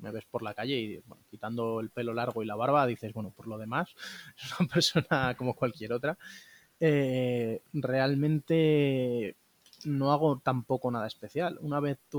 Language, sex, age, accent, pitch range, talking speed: Spanish, male, 20-39, Spanish, 115-135 Hz, 170 wpm